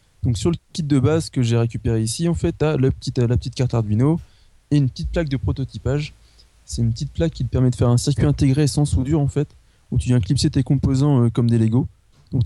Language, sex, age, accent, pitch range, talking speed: French, male, 20-39, French, 105-130 Hz, 245 wpm